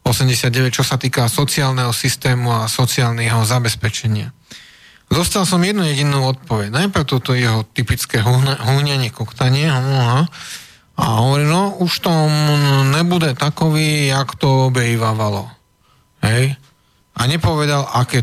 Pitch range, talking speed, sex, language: 125-150 Hz, 115 wpm, male, Slovak